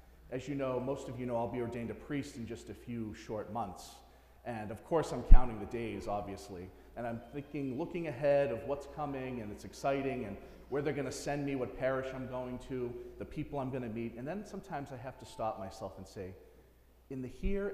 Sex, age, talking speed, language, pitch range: male, 40-59, 230 wpm, English, 90-140 Hz